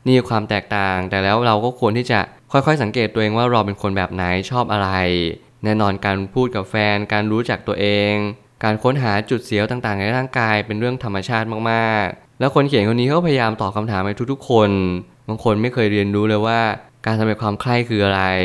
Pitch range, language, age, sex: 100-120 Hz, Thai, 20-39, male